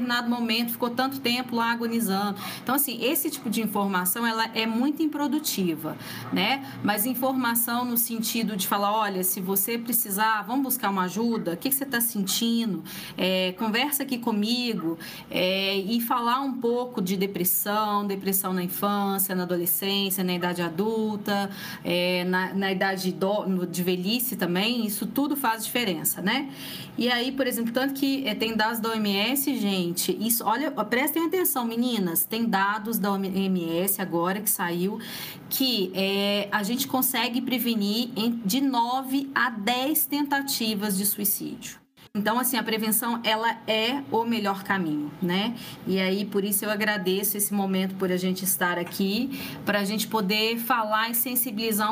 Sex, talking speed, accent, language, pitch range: female, 160 wpm, Brazilian, Portuguese, 190-240 Hz